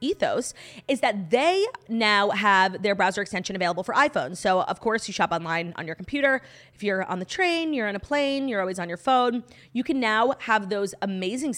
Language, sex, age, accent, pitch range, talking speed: English, female, 30-49, American, 180-255 Hz, 215 wpm